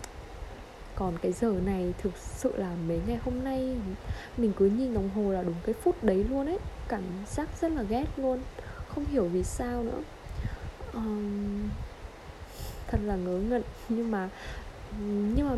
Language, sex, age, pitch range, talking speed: Vietnamese, female, 20-39, 185-245 Hz, 165 wpm